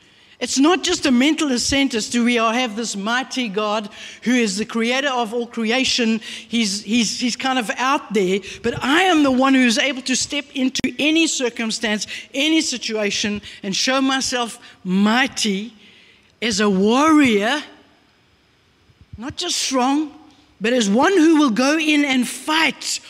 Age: 60-79